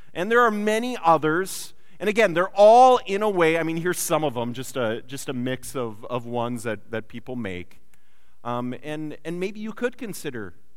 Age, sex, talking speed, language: 40-59, male, 205 wpm, English